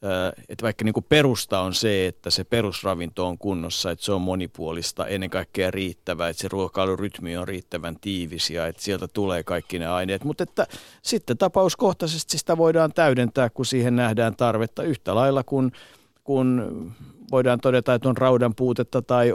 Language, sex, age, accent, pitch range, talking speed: Finnish, male, 50-69, native, 95-125 Hz, 160 wpm